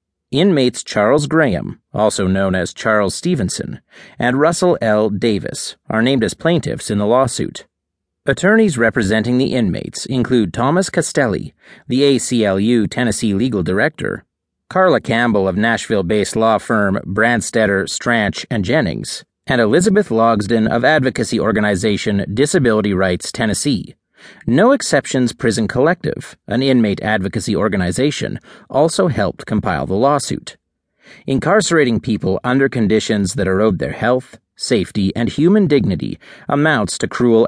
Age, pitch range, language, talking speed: 40-59, 105-145 Hz, English, 125 wpm